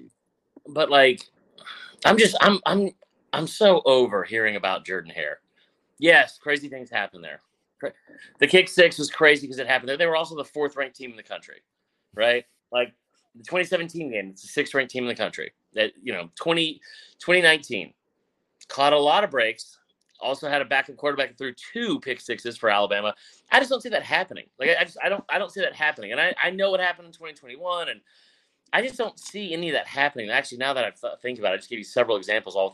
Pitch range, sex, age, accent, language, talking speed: 120-160 Hz, male, 30-49, American, English, 220 wpm